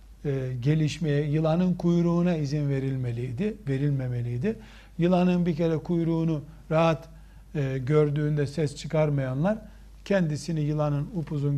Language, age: Turkish, 60-79